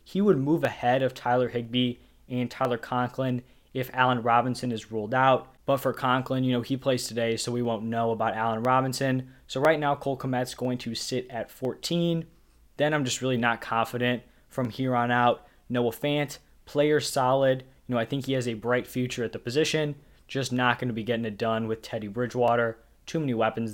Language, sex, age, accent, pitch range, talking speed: English, male, 20-39, American, 115-135 Hz, 200 wpm